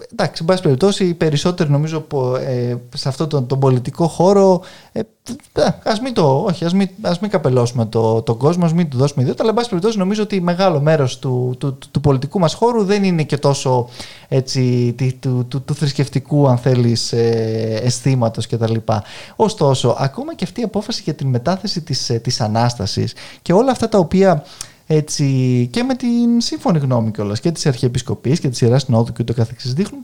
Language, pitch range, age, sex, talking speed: Greek, 125-185 Hz, 20-39, male, 195 wpm